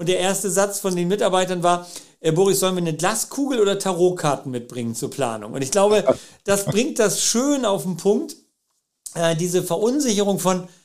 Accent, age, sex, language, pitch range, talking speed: German, 50-69, male, German, 165-195 Hz, 185 wpm